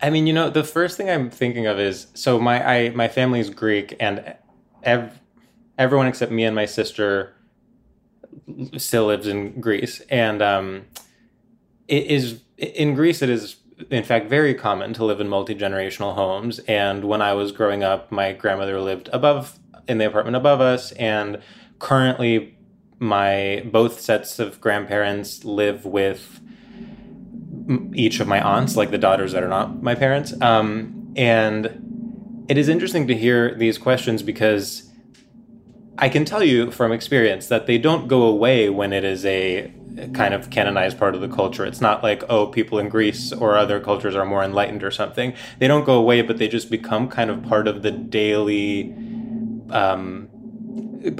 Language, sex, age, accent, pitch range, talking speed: English, male, 20-39, American, 105-135 Hz, 170 wpm